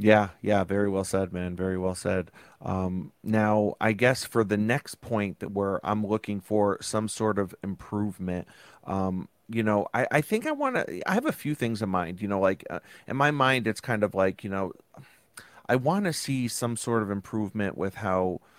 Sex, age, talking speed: male, 30-49, 210 wpm